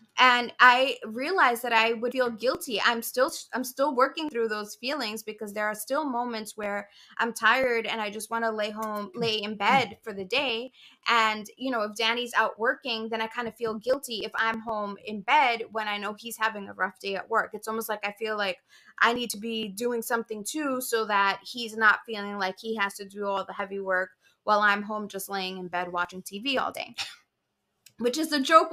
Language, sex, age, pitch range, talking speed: English, female, 20-39, 205-250 Hz, 220 wpm